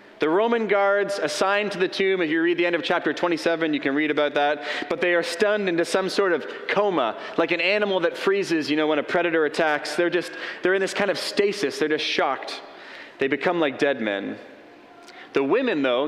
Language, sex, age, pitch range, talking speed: English, male, 30-49, 150-190 Hz, 220 wpm